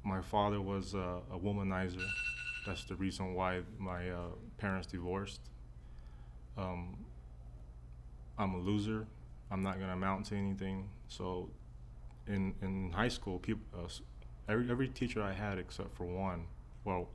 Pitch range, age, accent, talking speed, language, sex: 85-100 Hz, 20-39, American, 145 wpm, English, male